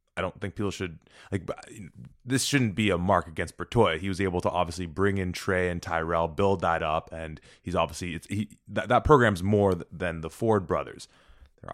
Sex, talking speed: male, 210 wpm